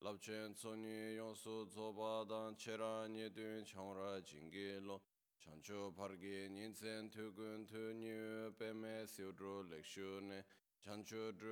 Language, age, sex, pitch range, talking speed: Italian, 20-39, male, 95-110 Hz, 105 wpm